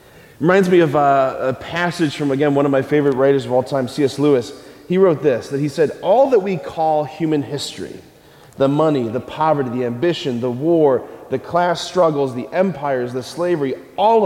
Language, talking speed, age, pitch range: English, 185 wpm, 30-49, 130-170 Hz